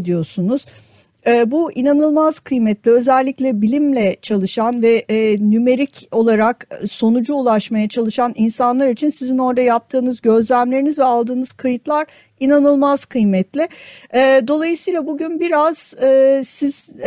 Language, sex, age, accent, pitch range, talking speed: Turkish, female, 50-69, native, 235-275 Hz, 105 wpm